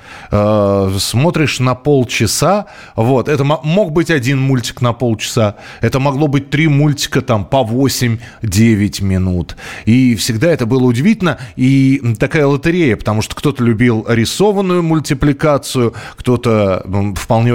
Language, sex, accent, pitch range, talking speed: Russian, male, native, 95-135 Hz, 125 wpm